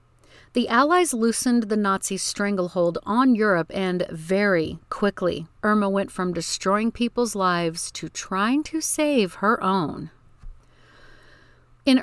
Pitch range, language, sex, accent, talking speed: 175-230 Hz, English, female, American, 120 wpm